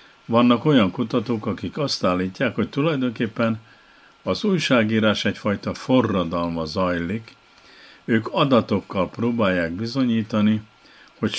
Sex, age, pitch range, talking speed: male, 50-69, 90-115 Hz, 95 wpm